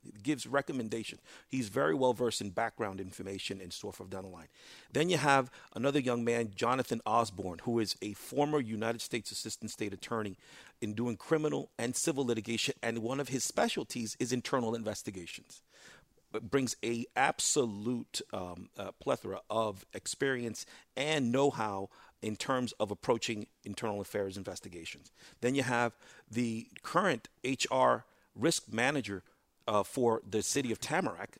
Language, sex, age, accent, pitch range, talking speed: English, male, 40-59, American, 105-125 Hz, 150 wpm